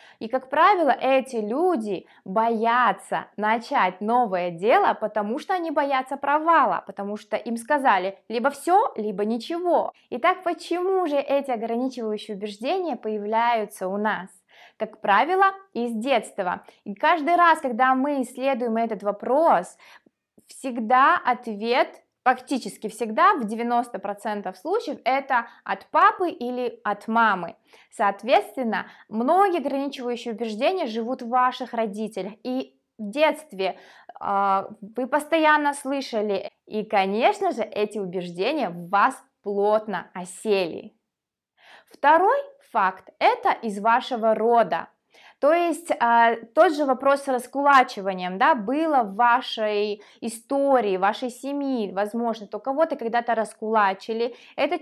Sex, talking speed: female, 115 wpm